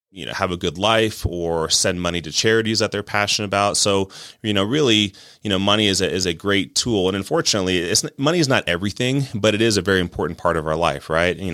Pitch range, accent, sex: 85-105 Hz, American, male